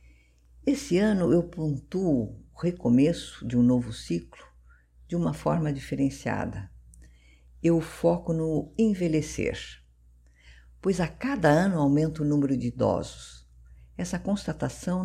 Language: Portuguese